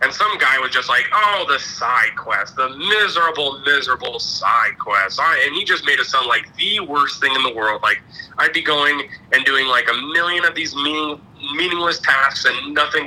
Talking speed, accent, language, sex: 195 wpm, American, English, male